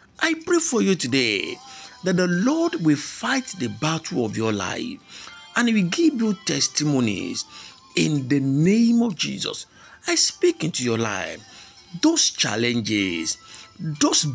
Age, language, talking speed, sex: 50-69, English, 140 wpm, male